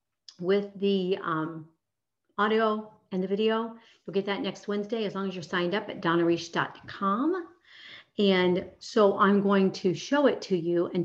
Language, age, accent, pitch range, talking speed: English, 40-59, American, 175-220 Hz, 165 wpm